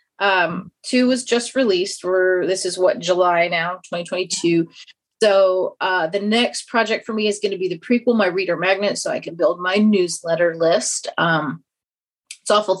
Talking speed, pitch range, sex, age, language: 180 wpm, 180-215 Hz, female, 30-49, English